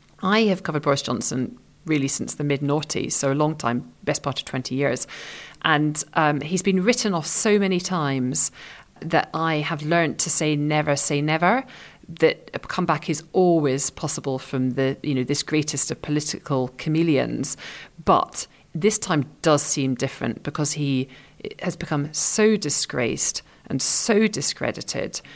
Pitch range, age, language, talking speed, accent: 145-170 Hz, 40-59, English, 155 wpm, British